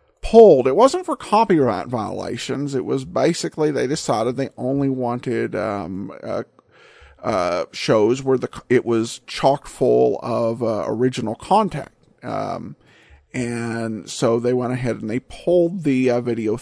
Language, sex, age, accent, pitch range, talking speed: English, male, 50-69, American, 125-170 Hz, 140 wpm